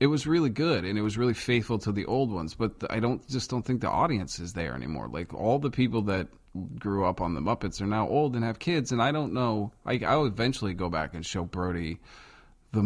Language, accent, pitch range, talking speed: English, American, 95-120 Hz, 245 wpm